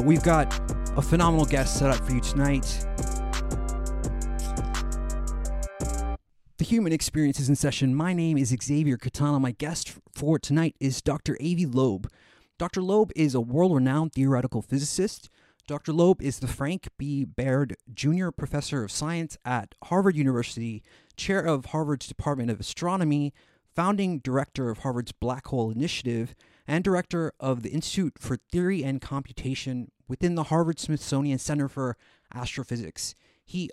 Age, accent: 30-49, American